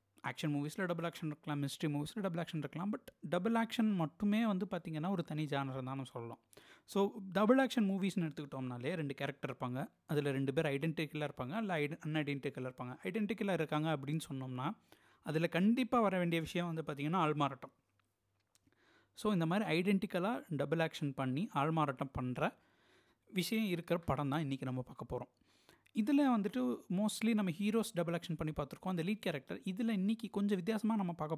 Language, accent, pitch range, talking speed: Tamil, native, 140-195 Hz, 165 wpm